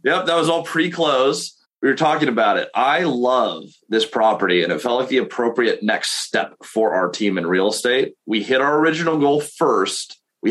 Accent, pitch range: American, 110-135 Hz